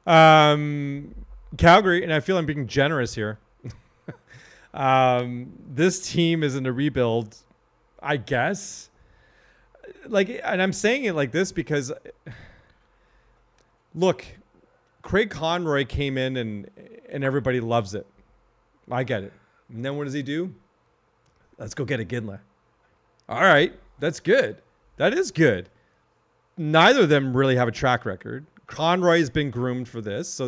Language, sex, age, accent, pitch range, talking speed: English, male, 30-49, American, 115-155 Hz, 140 wpm